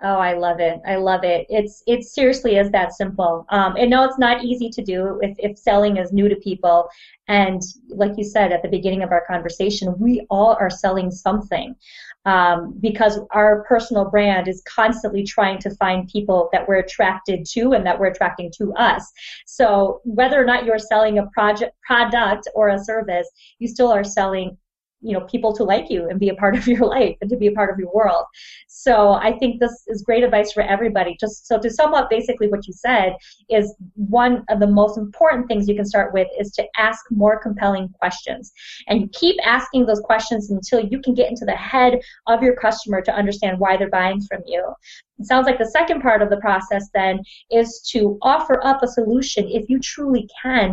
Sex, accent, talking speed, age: female, American, 210 wpm, 30-49